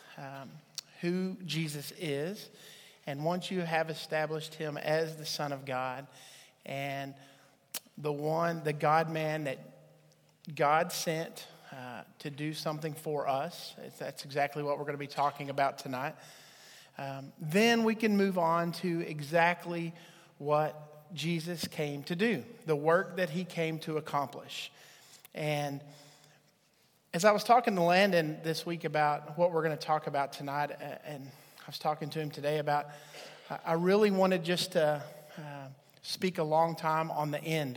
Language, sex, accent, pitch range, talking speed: English, male, American, 145-175 Hz, 155 wpm